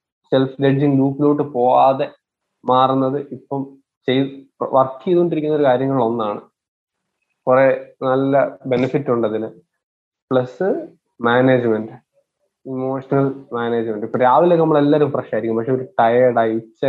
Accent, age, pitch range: native, 20-39, 120-140 Hz